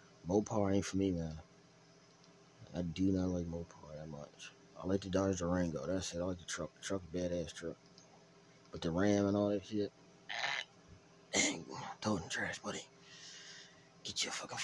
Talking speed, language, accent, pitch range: 170 wpm, English, American, 90-135 Hz